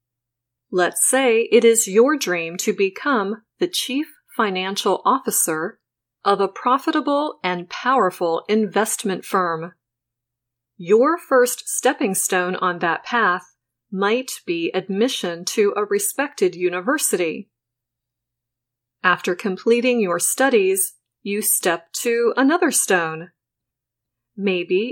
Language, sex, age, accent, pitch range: Chinese, female, 30-49, American, 150-235 Hz